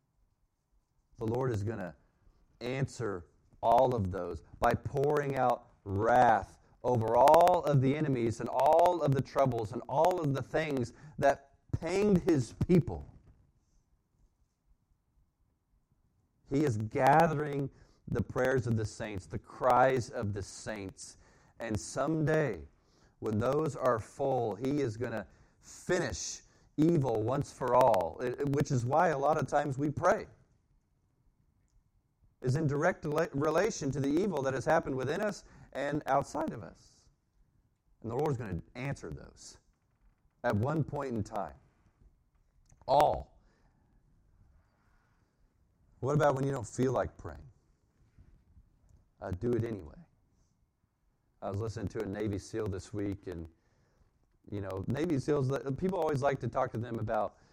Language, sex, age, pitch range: English, male, 40-59, 105-140 Hz